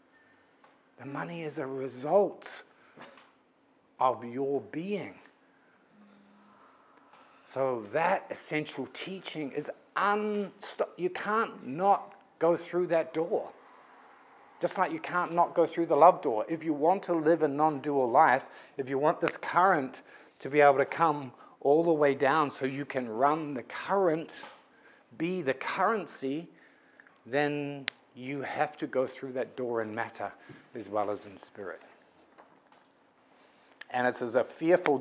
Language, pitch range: English, 130-165 Hz